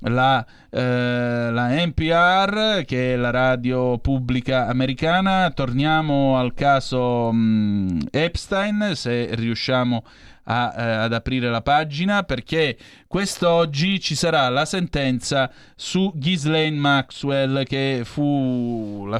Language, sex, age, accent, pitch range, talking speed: Italian, male, 30-49, native, 120-145 Hz, 100 wpm